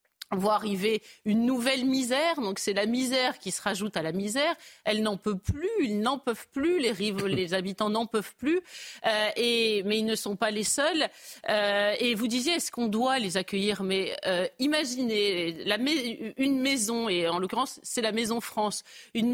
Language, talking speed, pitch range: French, 185 wpm, 200-265 Hz